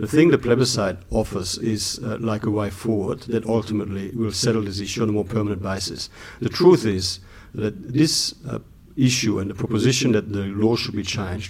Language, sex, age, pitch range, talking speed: English, male, 50-69, 100-120 Hz, 200 wpm